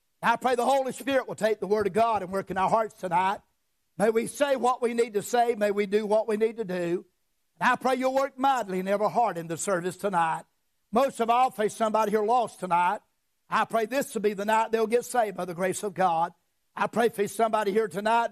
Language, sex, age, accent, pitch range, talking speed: English, male, 60-79, American, 195-245 Hz, 240 wpm